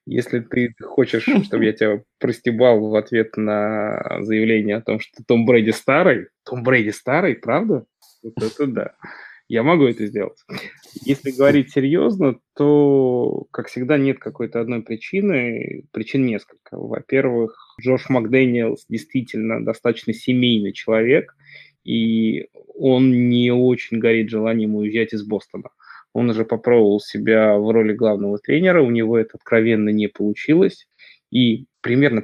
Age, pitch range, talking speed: 20-39, 110-125 Hz, 135 wpm